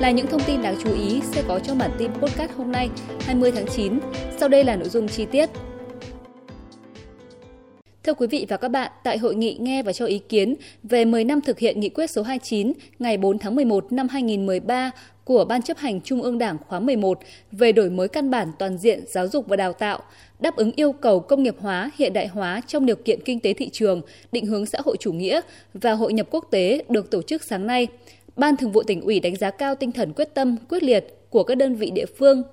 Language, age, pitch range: Vietnamese, 20-39, 215-270 Hz